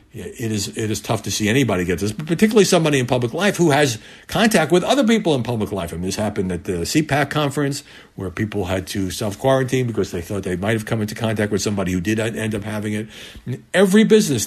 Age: 60-79